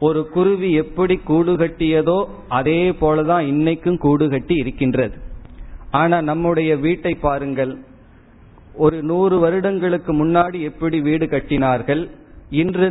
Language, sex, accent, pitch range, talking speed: Tamil, male, native, 135-165 Hz, 100 wpm